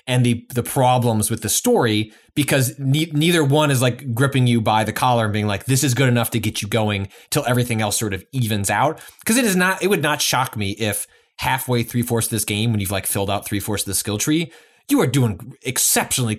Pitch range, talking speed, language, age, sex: 110-150 Hz, 240 wpm, English, 20-39, male